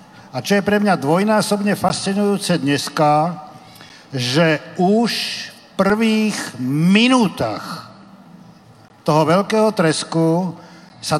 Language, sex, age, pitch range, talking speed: Slovak, male, 50-69, 165-210 Hz, 90 wpm